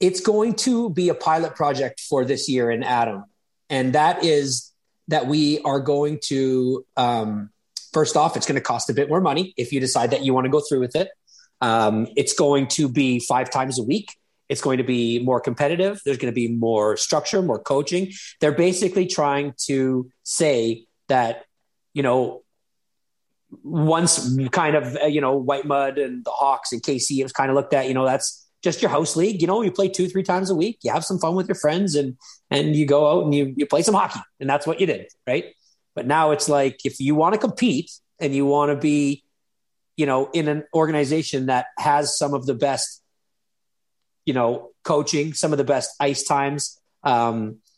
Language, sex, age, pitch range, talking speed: English, male, 30-49, 135-160 Hz, 205 wpm